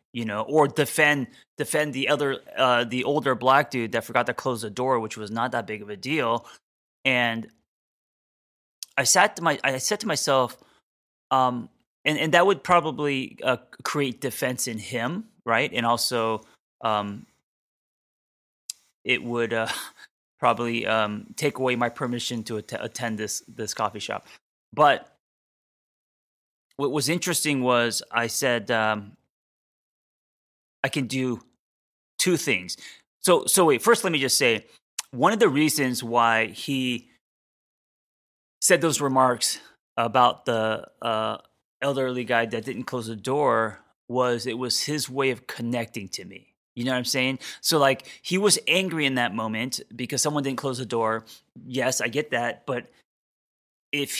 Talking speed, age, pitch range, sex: 155 wpm, 20-39, 115-145 Hz, male